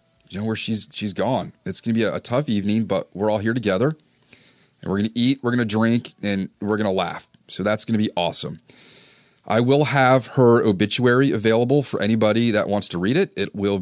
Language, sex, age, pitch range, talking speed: English, male, 30-49, 100-140 Hz, 235 wpm